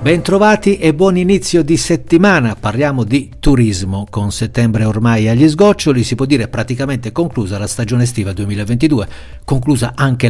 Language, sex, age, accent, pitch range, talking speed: Italian, male, 60-79, native, 105-150 Hz, 145 wpm